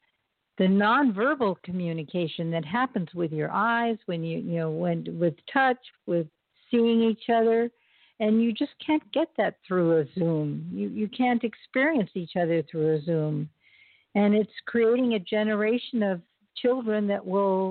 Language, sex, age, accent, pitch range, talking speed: English, female, 60-79, American, 185-235 Hz, 155 wpm